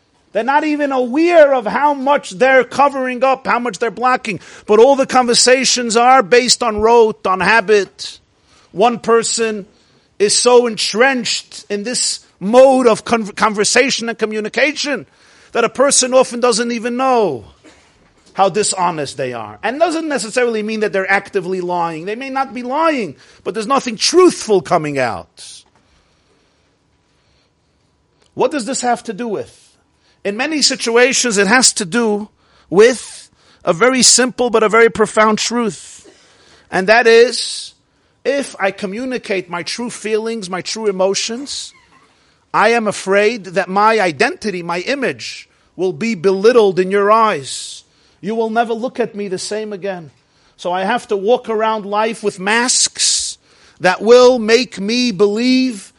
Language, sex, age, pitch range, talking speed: English, male, 50-69, 205-250 Hz, 150 wpm